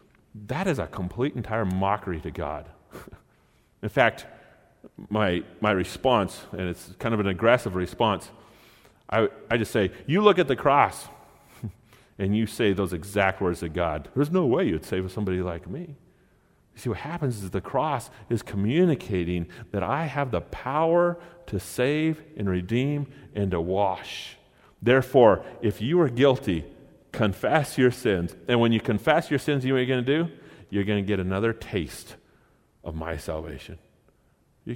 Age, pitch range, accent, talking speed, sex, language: 40-59, 95-135 Hz, American, 165 wpm, male, English